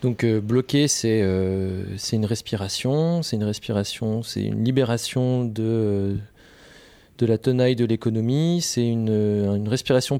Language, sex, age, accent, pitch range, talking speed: French, male, 20-39, French, 105-130 Hz, 135 wpm